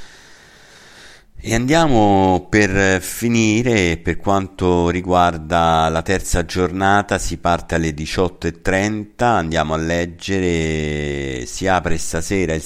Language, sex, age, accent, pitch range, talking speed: Italian, male, 50-69, native, 80-90 Hz, 100 wpm